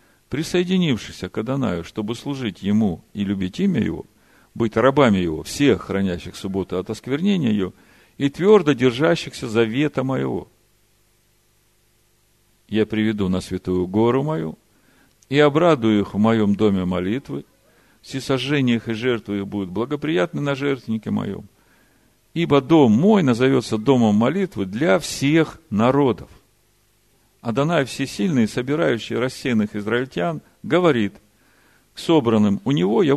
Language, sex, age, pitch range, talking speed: Russian, male, 50-69, 105-135 Hz, 120 wpm